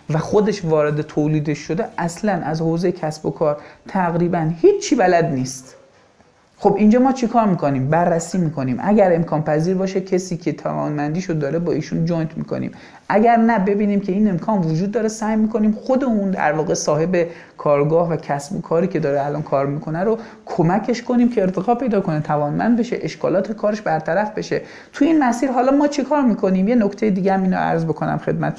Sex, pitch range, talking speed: male, 155-210 Hz, 195 wpm